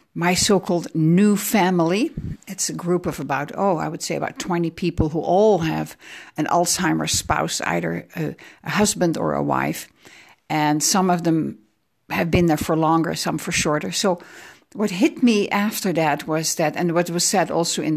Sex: female